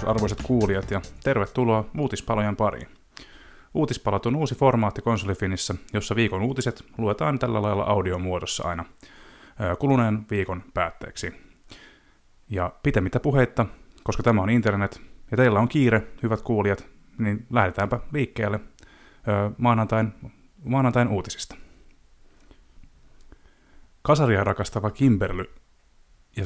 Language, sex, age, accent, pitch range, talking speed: Finnish, male, 30-49, native, 100-120 Hz, 100 wpm